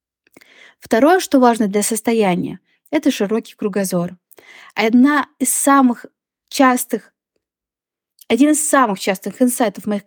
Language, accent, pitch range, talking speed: Russian, native, 210-265 Hz, 105 wpm